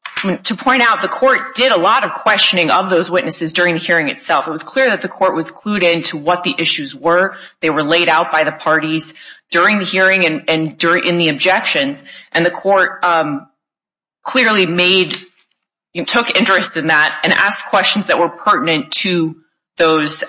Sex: female